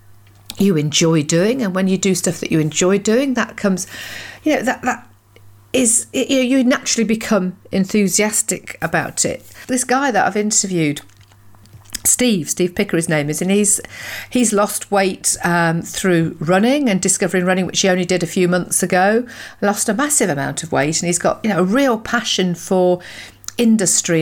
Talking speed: 180 wpm